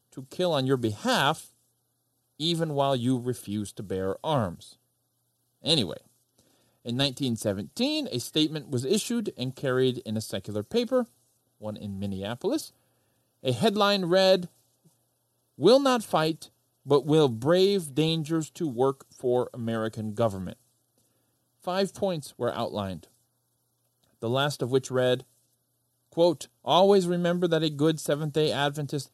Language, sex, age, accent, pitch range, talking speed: English, male, 40-59, American, 125-170 Hz, 125 wpm